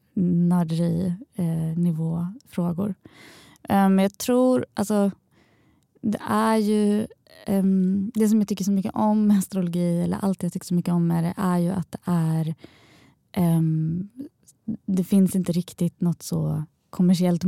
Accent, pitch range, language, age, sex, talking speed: native, 165-185 Hz, Swedish, 20-39, female, 150 wpm